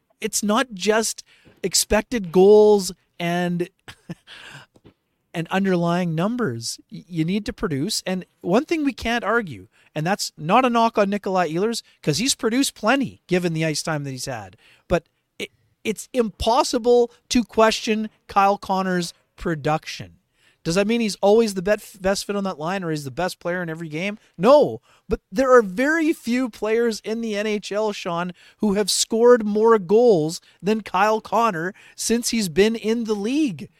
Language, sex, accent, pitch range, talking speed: English, male, American, 175-235 Hz, 160 wpm